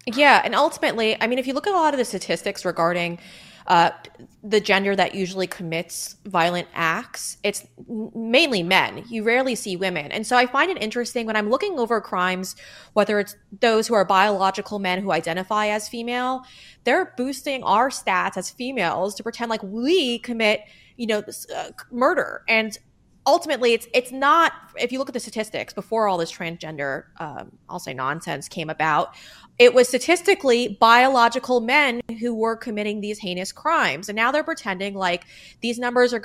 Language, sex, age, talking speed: English, female, 20-39, 175 wpm